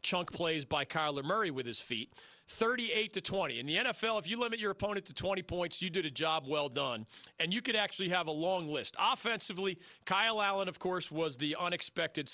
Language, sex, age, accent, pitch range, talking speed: English, male, 40-59, American, 145-190 Hz, 215 wpm